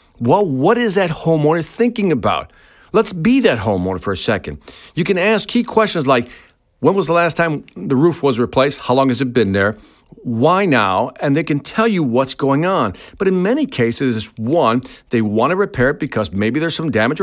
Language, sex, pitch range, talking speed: English, male, 120-195 Hz, 215 wpm